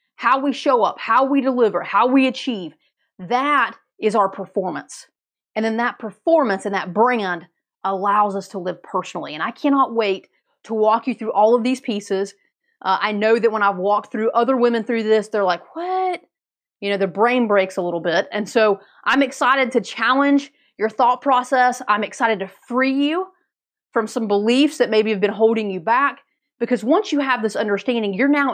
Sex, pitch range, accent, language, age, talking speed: female, 205-265 Hz, American, English, 30-49, 195 wpm